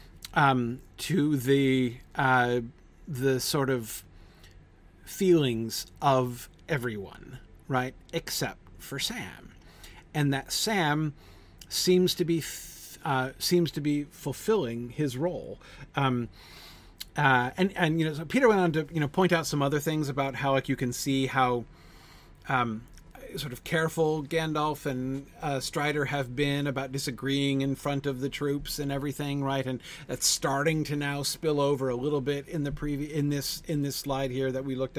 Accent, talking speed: American, 165 wpm